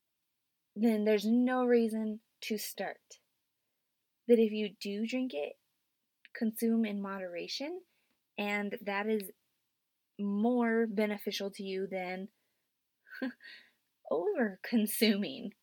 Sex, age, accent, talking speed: female, 20-39, American, 90 wpm